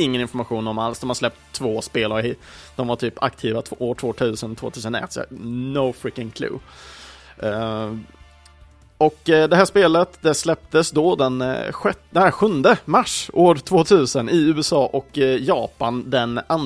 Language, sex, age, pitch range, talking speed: Swedish, male, 30-49, 110-140 Hz, 145 wpm